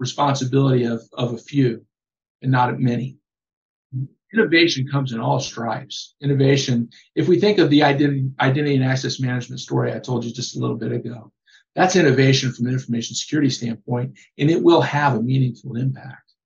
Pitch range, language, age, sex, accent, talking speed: 125-145 Hz, English, 50-69, male, American, 175 wpm